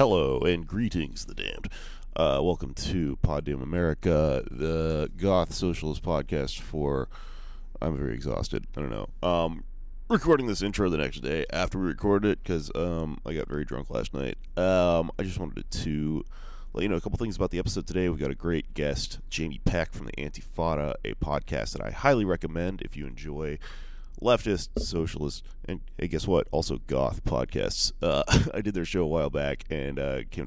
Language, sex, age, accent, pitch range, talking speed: English, male, 30-49, American, 75-90 Hz, 185 wpm